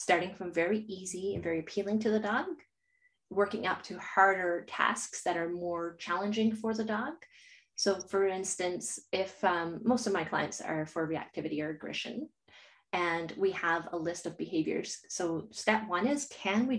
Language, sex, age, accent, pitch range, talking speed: English, female, 30-49, American, 175-245 Hz, 175 wpm